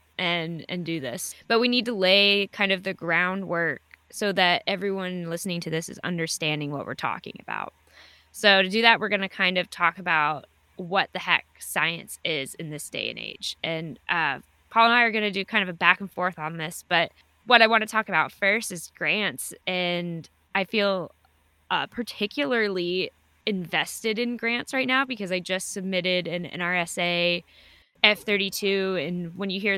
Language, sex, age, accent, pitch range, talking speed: English, female, 10-29, American, 165-200 Hz, 190 wpm